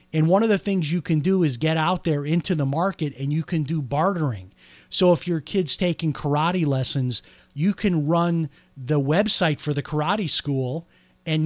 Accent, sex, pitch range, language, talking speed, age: American, male, 145-175 Hz, English, 195 wpm, 30-49